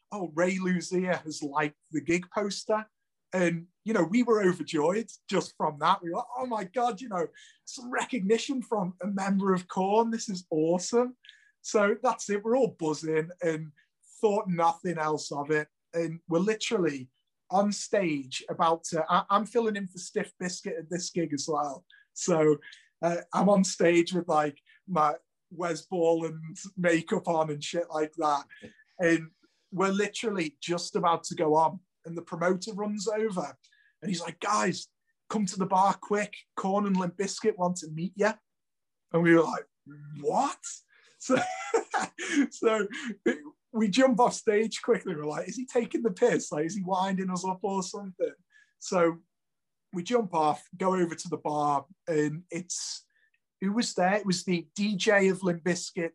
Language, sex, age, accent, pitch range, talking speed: English, male, 30-49, British, 165-215 Hz, 170 wpm